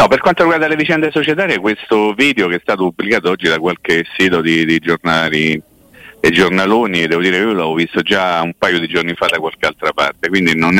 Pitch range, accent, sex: 80-100 Hz, native, male